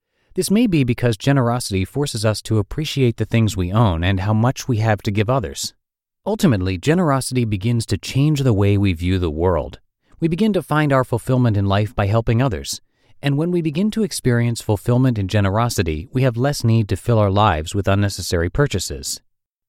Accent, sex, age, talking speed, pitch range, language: American, male, 30-49, 190 wpm, 95-130 Hz, English